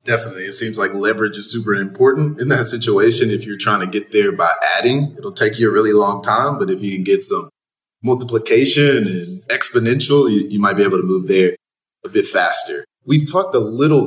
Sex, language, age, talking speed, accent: male, English, 20-39, 210 wpm, American